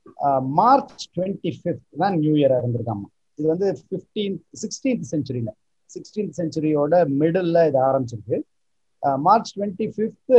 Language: Tamil